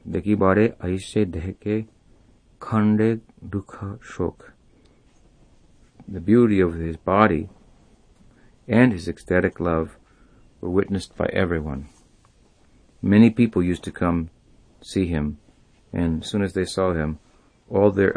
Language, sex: English, male